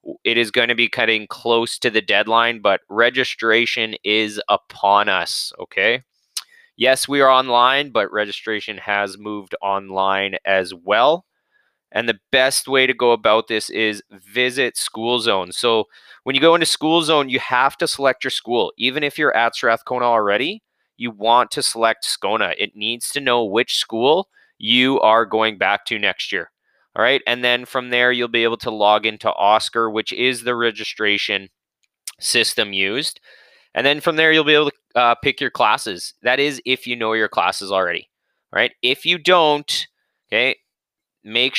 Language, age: English, 20-39